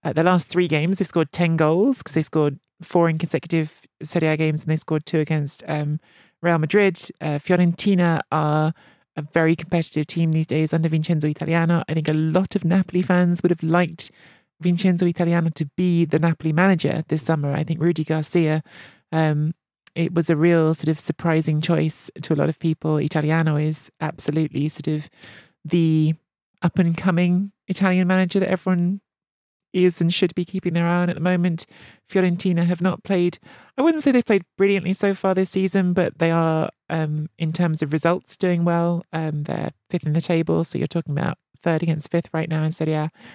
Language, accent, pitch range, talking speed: English, British, 155-180 Hz, 190 wpm